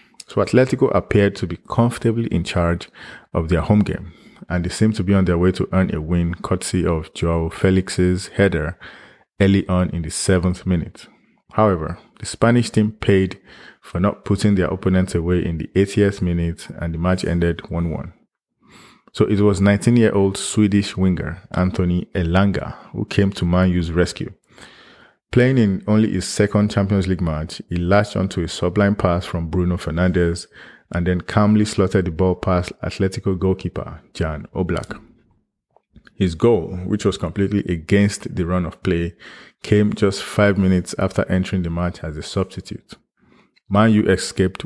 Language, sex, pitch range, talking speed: English, male, 85-100 Hz, 160 wpm